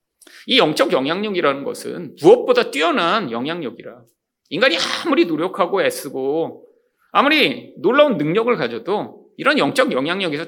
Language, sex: Korean, male